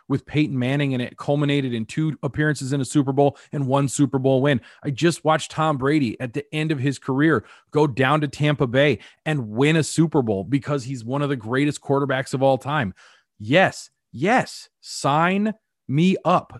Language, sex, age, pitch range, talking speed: English, male, 30-49, 135-160 Hz, 195 wpm